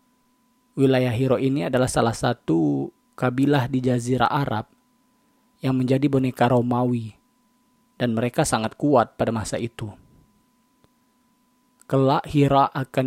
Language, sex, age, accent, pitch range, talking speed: Indonesian, male, 20-39, native, 125-170 Hz, 110 wpm